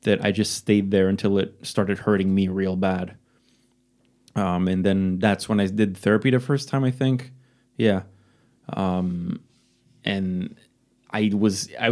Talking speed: 155 wpm